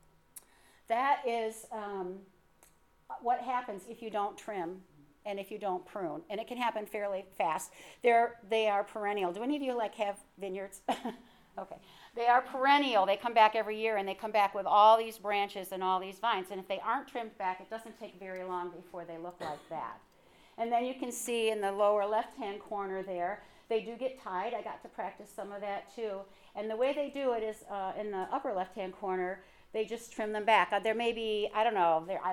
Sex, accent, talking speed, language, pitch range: female, American, 215 wpm, English, 190-230 Hz